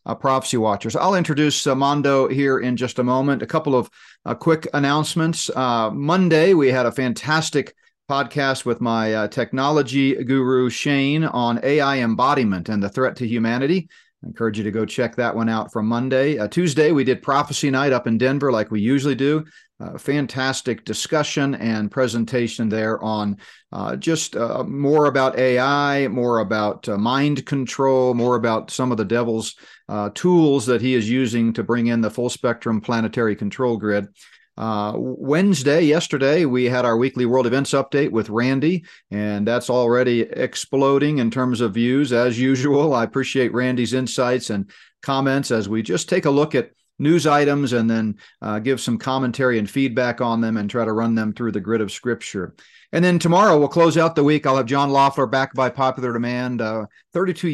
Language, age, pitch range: English, 40-59, 115-140 Hz